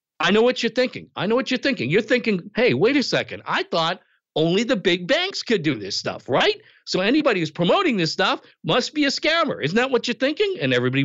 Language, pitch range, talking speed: English, 140-215 Hz, 240 wpm